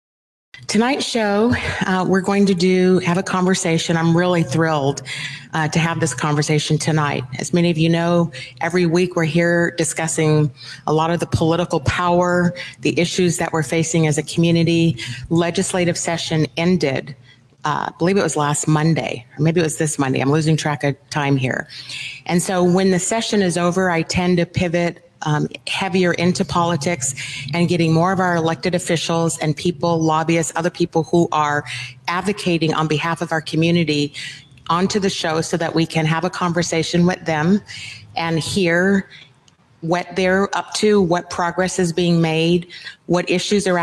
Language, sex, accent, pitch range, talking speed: English, female, American, 155-180 Hz, 175 wpm